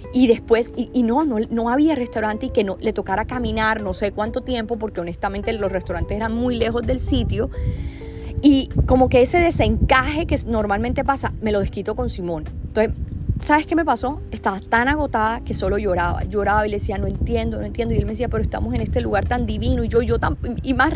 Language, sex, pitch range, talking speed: Spanish, female, 200-250 Hz, 220 wpm